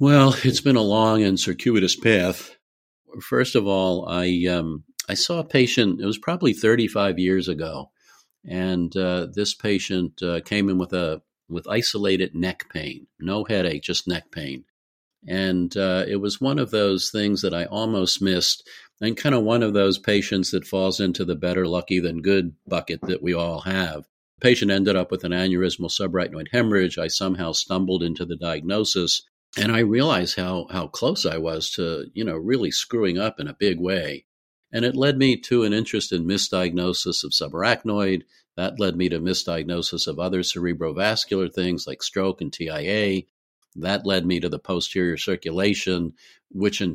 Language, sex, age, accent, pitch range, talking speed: English, male, 50-69, American, 90-105 Hz, 180 wpm